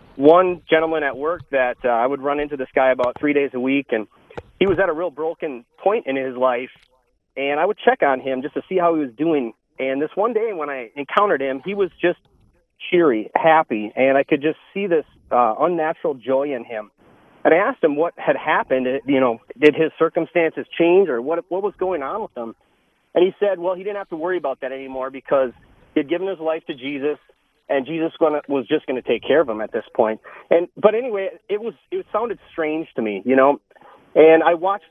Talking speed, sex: 230 wpm, male